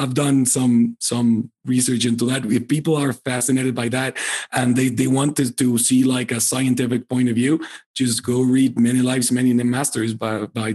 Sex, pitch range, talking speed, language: male, 115-135 Hz, 200 wpm, English